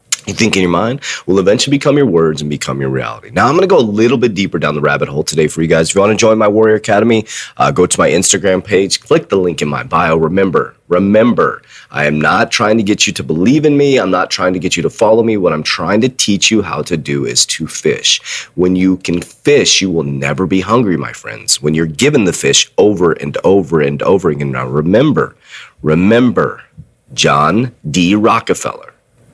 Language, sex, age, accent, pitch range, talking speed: English, male, 30-49, American, 80-110 Hz, 230 wpm